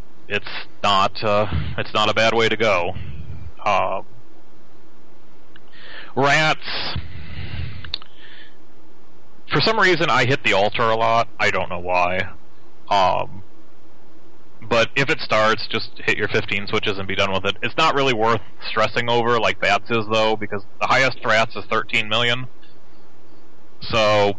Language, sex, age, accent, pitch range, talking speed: English, male, 30-49, American, 100-120 Hz, 145 wpm